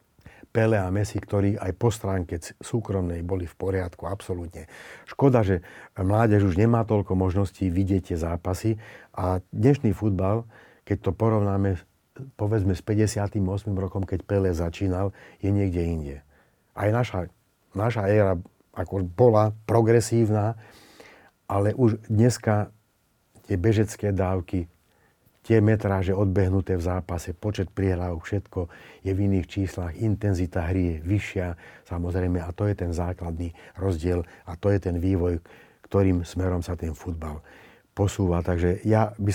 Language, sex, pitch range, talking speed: Slovak, male, 90-105 Hz, 130 wpm